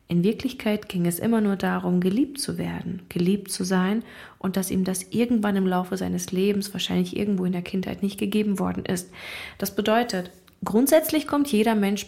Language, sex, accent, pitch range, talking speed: German, female, German, 185-230 Hz, 185 wpm